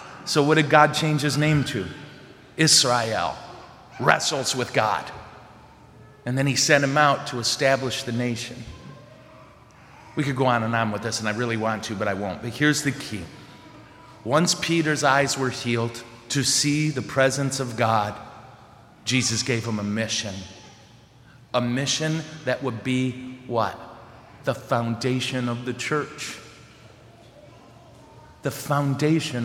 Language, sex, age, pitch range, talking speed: English, male, 40-59, 115-140 Hz, 145 wpm